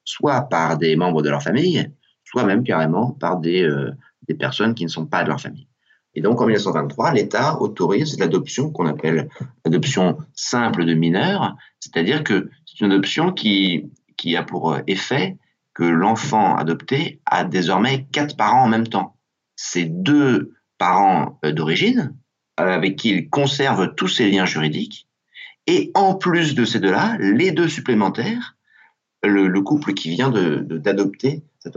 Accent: French